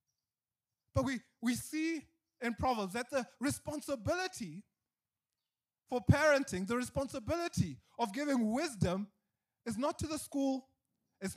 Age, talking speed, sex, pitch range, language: 20-39, 115 wpm, male, 210-280 Hz, English